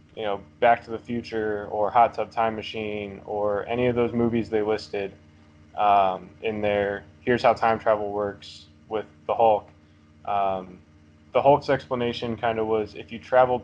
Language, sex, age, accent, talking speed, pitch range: English, male, 20-39, American, 170 wpm, 100-120 Hz